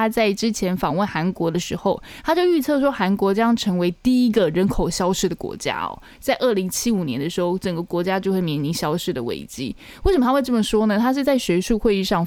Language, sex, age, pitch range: Chinese, female, 20-39, 185-230 Hz